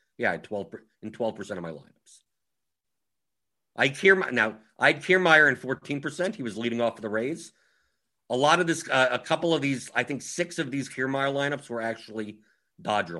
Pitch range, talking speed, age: 95-150 Hz, 195 wpm, 50-69